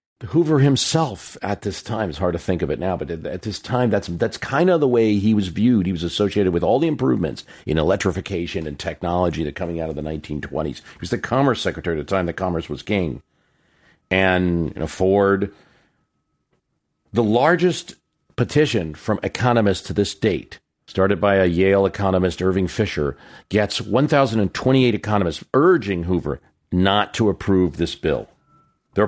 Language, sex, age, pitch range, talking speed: English, male, 50-69, 85-110 Hz, 175 wpm